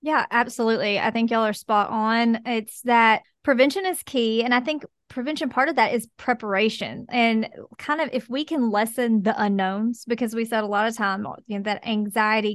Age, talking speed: 20-39, 190 wpm